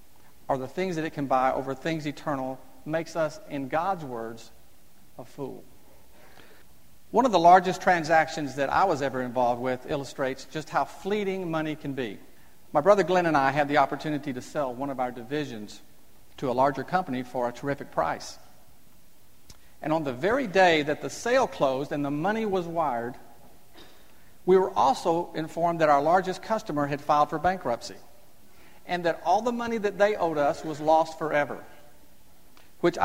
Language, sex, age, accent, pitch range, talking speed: English, male, 50-69, American, 135-180 Hz, 175 wpm